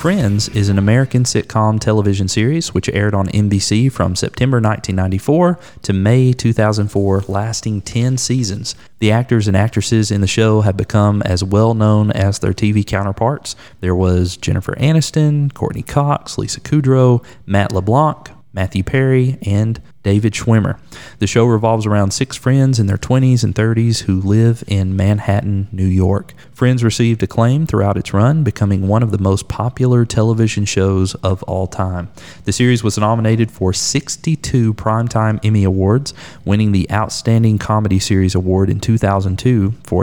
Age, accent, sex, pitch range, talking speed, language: 30-49, American, male, 95-120 Hz, 155 wpm, English